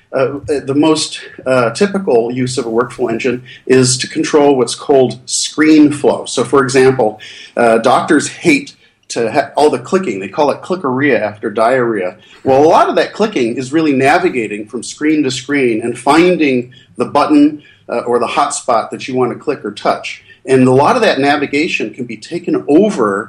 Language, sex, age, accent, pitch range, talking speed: English, male, 40-59, American, 120-140 Hz, 180 wpm